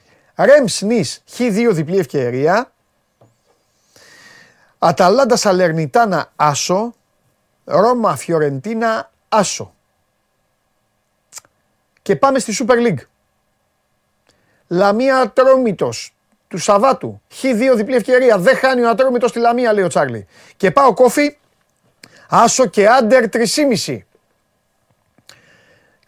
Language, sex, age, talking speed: Greek, male, 30-49, 90 wpm